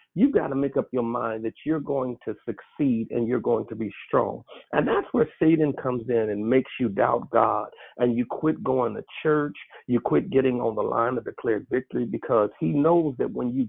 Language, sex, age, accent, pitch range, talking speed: English, male, 50-69, American, 115-145 Hz, 220 wpm